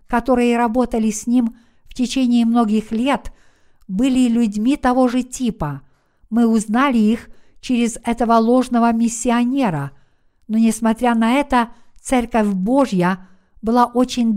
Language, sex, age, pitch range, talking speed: Russian, female, 60-79, 205-250 Hz, 115 wpm